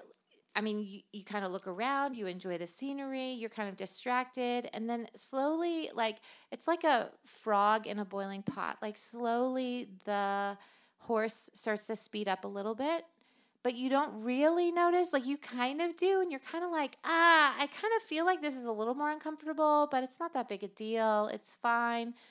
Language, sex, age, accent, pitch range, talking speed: English, female, 30-49, American, 200-250 Hz, 200 wpm